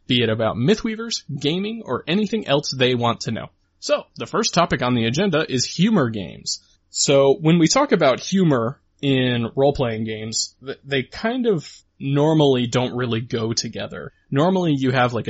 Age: 20-39